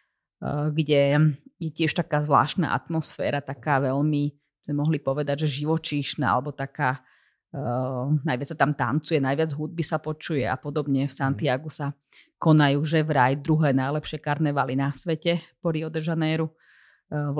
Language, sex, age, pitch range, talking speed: Slovak, female, 30-49, 135-155 Hz, 150 wpm